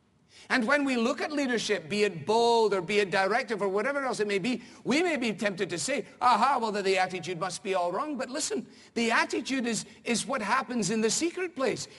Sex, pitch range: male, 145-240 Hz